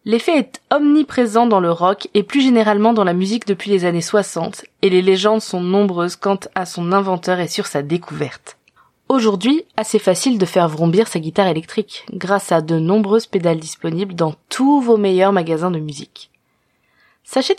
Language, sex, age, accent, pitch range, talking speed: French, female, 20-39, French, 185-245 Hz, 175 wpm